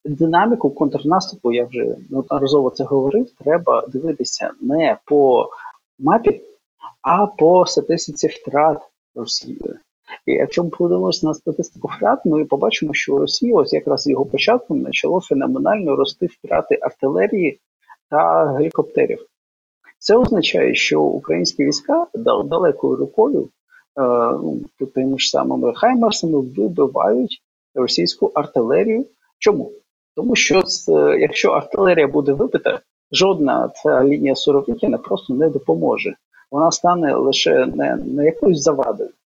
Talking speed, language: 115 wpm, Ukrainian